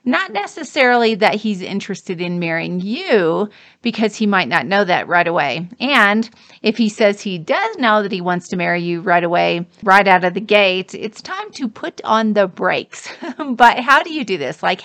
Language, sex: English, female